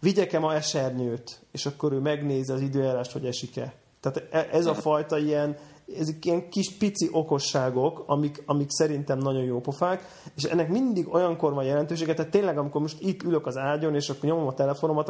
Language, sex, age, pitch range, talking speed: Hungarian, male, 30-49, 135-165 Hz, 185 wpm